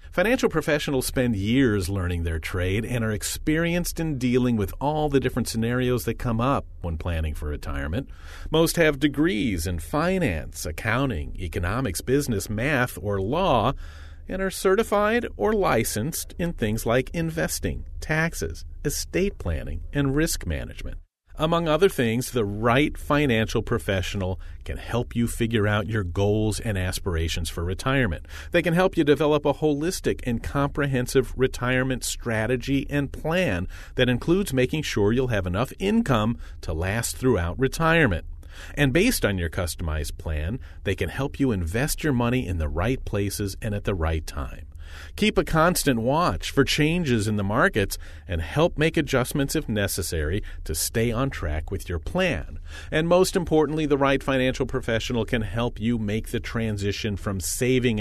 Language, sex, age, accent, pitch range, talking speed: English, male, 40-59, American, 85-135 Hz, 155 wpm